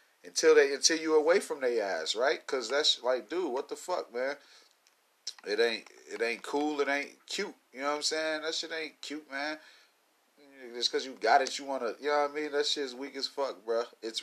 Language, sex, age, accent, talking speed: English, male, 30-49, American, 230 wpm